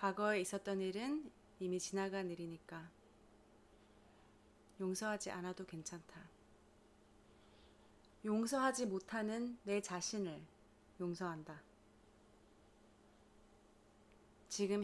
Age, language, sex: 30-49, Korean, female